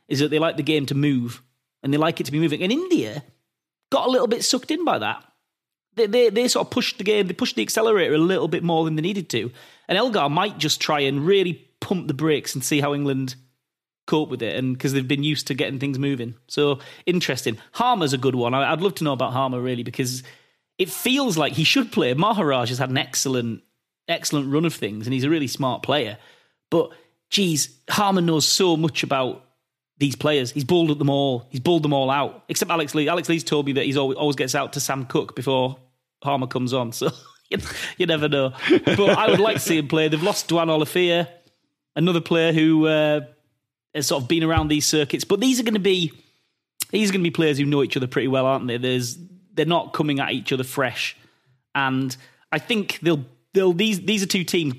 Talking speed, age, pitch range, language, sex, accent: 230 wpm, 30-49, 135-170 Hz, English, male, British